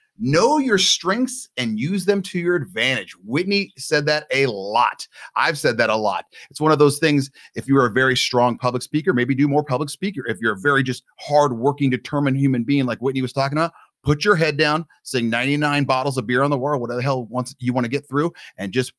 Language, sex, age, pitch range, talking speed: English, male, 30-49, 120-155 Hz, 230 wpm